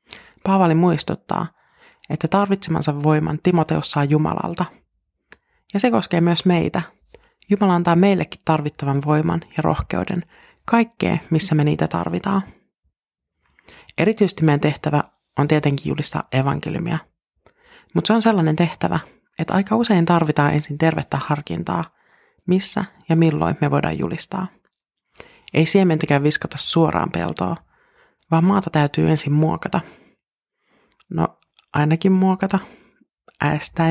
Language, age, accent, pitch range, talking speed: Finnish, 30-49, native, 150-185 Hz, 115 wpm